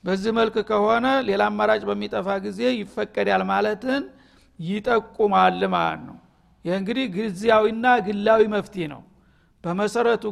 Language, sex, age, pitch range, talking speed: Amharic, male, 60-79, 195-225 Hz, 105 wpm